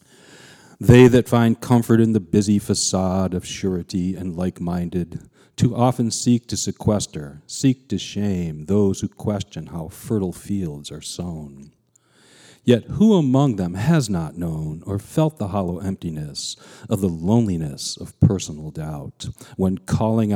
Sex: male